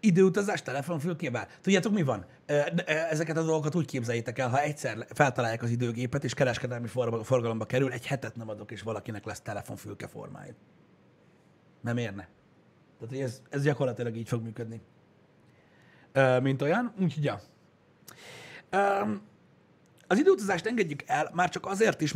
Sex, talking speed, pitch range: male, 135 wpm, 125-155 Hz